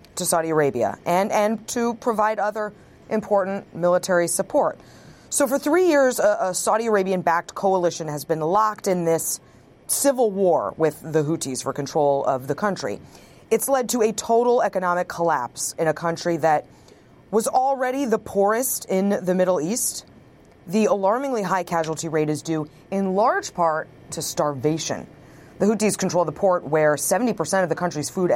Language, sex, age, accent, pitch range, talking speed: English, female, 30-49, American, 155-210 Hz, 165 wpm